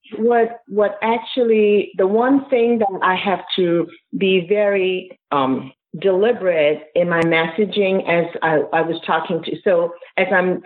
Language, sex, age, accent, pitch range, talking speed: English, female, 40-59, American, 155-205 Hz, 145 wpm